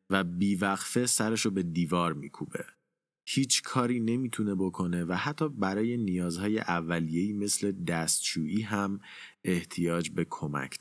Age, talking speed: 30-49, 120 wpm